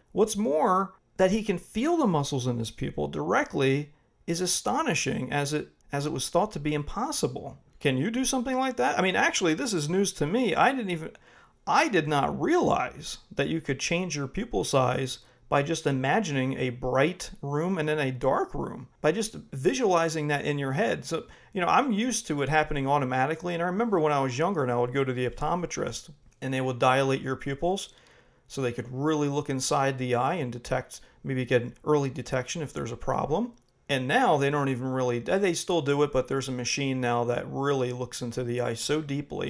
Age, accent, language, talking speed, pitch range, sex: 40-59, American, English, 215 wpm, 130-160 Hz, male